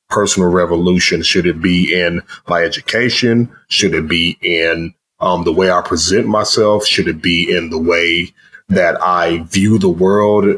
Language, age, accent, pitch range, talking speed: English, 30-49, American, 85-100 Hz, 165 wpm